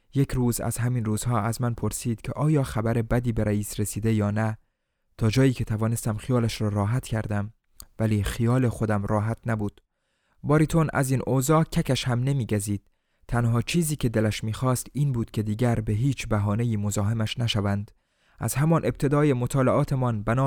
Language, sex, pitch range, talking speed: Persian, male, 110-140 Hz, 165 wpm